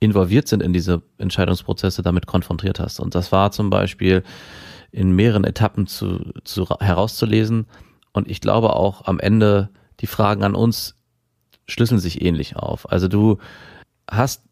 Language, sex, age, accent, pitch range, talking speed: German, male, 30-49, German, 95-115 Hz, 150 wpm